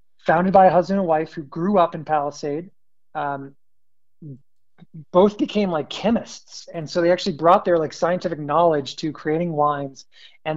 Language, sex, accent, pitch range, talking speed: English, male, American, 145-185 Hz, 165 wpm